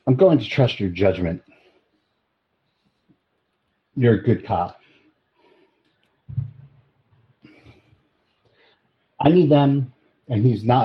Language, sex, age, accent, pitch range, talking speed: English, male, 50-69, American, 95-125 Hz, 90 wpm